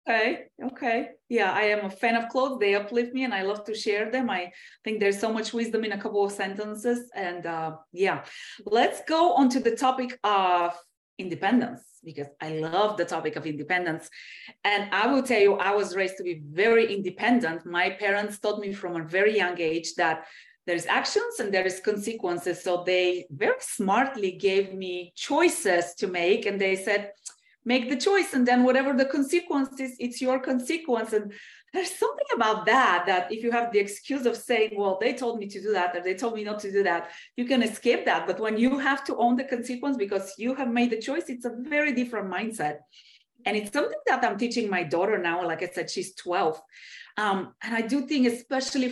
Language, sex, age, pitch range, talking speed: English, female, 30-49, 185-250 Hz, 205 wpm